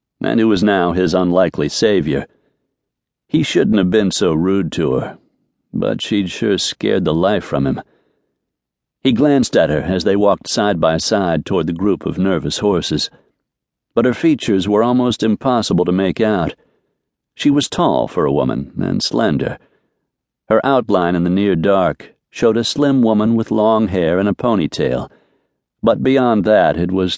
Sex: male